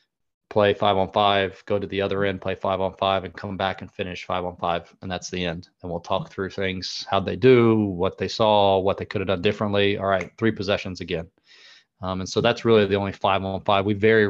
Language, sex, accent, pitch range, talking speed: English, male, American, 95-110 Hz, 250 wpm